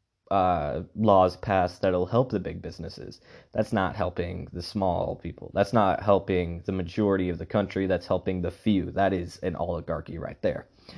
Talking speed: 175 wpm